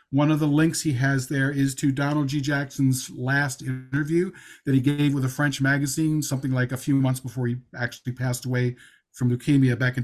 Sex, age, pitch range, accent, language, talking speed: male, 40-59, 130-155 Hz, American, English, 210 wpm